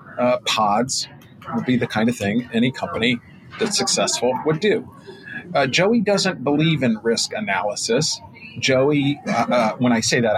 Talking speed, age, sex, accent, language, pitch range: 160 wpm, 40-59, male, American, English, 115-155 Hz